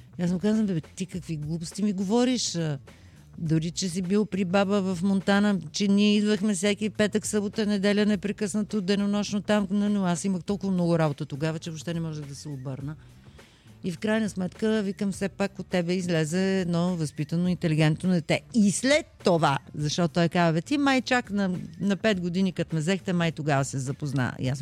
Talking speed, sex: 185 wpm, female